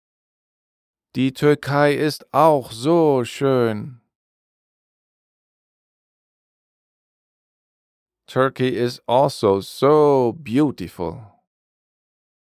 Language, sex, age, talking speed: German, male, 40-59, 55 wpm